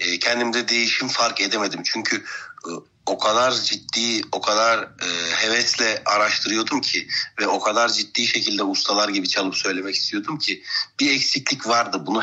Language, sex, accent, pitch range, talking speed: Turkish, male, native, 110-135 Hz, 135 wpm